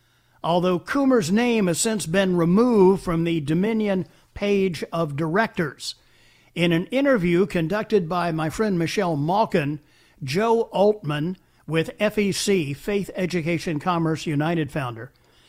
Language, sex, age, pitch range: English, male, 50-69, 160-215 Hz